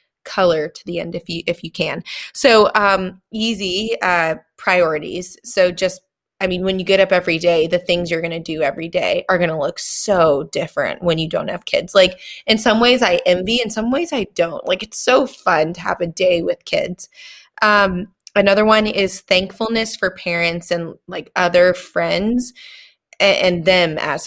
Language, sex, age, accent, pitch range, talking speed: English, female, 20-39, American, 175-210 Hz, 195 wpm